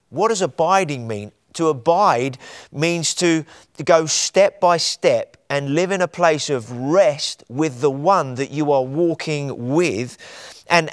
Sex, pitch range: male, 135-170 Hz